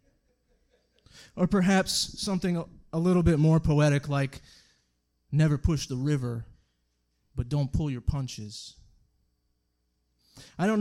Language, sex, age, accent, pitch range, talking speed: English, male, 30-49, American, 110-165 Hz, 110 wpm